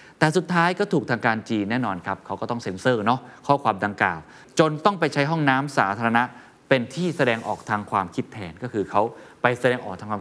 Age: 20-39